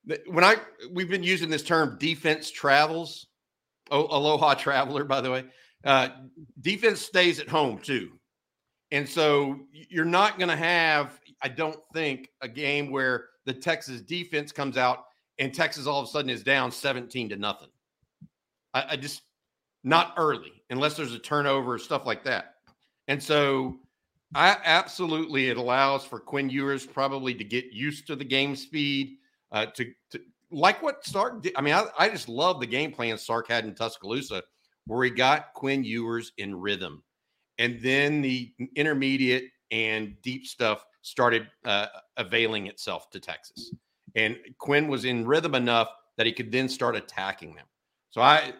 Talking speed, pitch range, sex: 165 wpm, 120-150 Hz, male